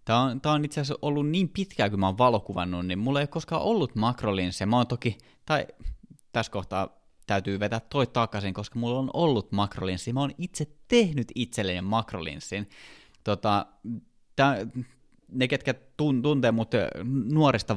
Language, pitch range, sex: Finnish, 95-130 Hz, male